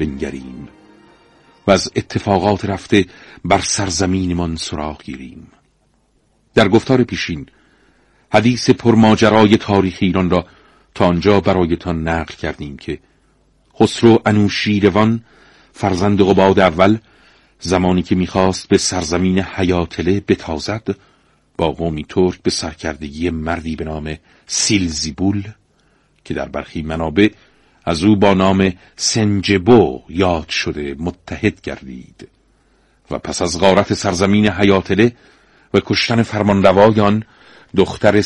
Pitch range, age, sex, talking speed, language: 90-105 Hz, 50-69, male, 105 wpm, Persian